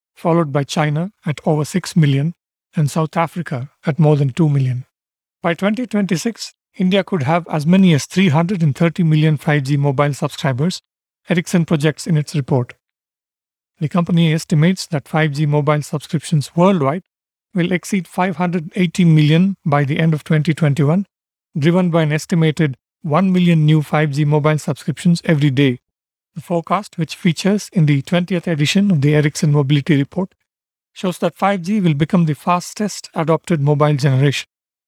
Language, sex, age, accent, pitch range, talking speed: English, male, 50-69, Indian, 150-180 Hz, 145 wpm